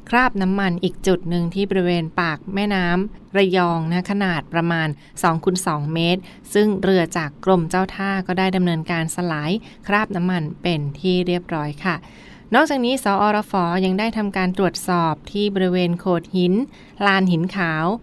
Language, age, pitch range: Thai, 20-39, 165-190 Hz